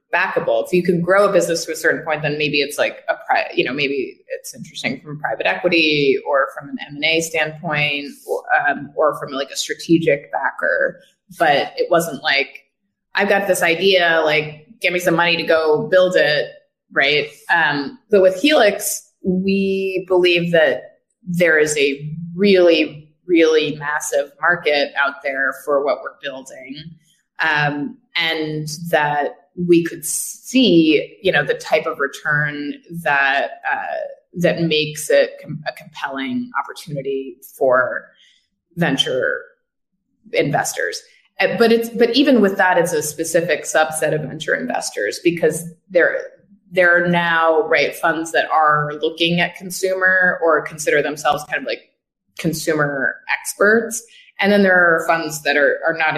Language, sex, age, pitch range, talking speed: English, female, 20-39, 155-225 Hz, 155 wpm